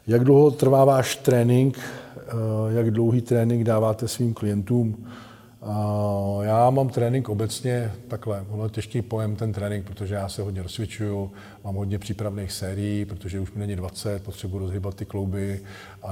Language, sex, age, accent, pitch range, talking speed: Czech, male, 40-59, native, 95-110 Hz, 155 wpm